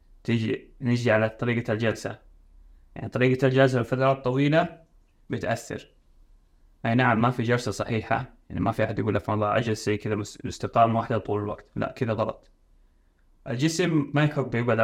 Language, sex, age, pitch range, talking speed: Arabic, male, 20-39, 105-130 Hz, 155 wpm